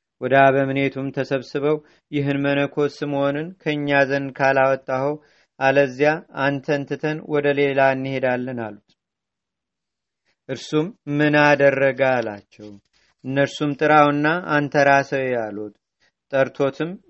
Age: 40-59